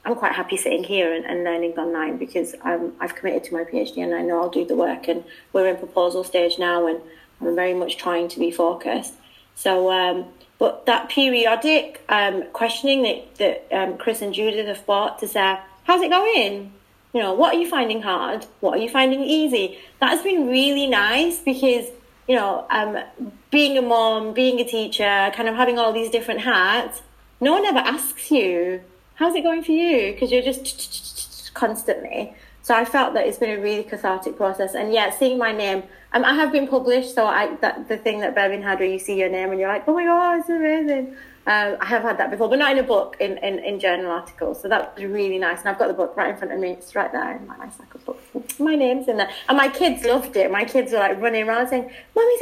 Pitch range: 190-270 Hz